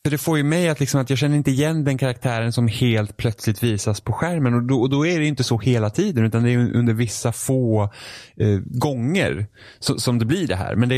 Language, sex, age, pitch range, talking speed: Swedish, male, 20-39, 105-130 Hz, 250 wpm